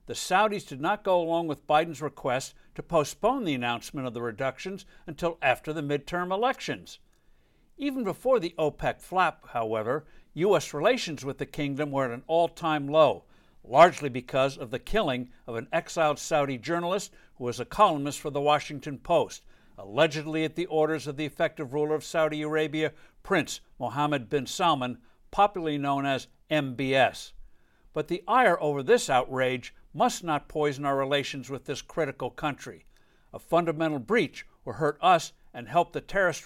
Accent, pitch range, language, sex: American, 140-170 Hz, English, male